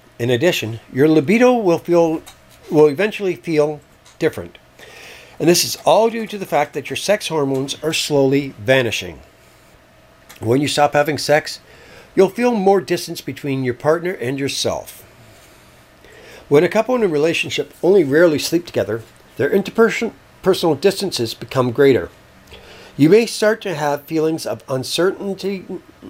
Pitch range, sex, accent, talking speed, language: 130-190 Hz, male, American, 145 wpm, English